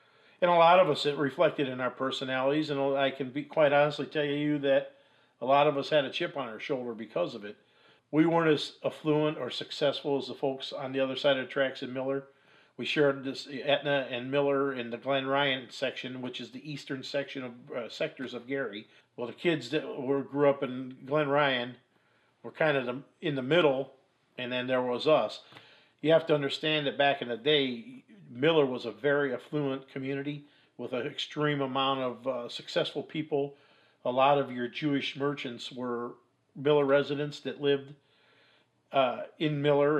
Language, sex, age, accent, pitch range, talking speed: English, male, 50-69, American, 130-150 Hz, 195 wpm